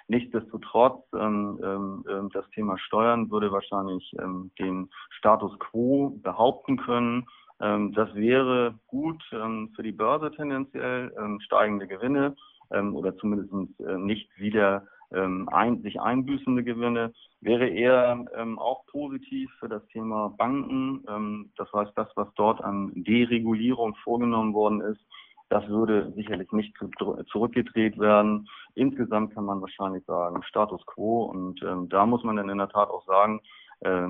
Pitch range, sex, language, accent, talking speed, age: 100-120 Hz, male, German, German, 145 wpm, 40-59